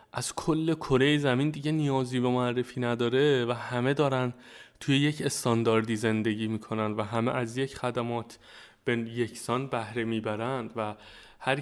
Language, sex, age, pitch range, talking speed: Persian, male, 20-39, 115-135 Hz, 145 wpm